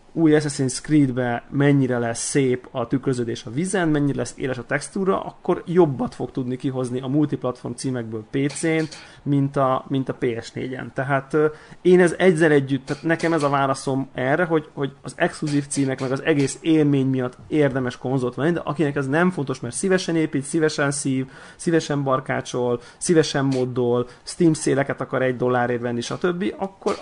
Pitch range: 125-155 Hz